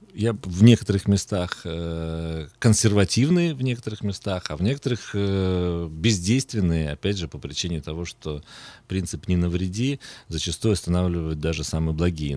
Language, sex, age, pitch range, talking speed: Russian, male, 40-59, 80-105 Hz, 135 wpm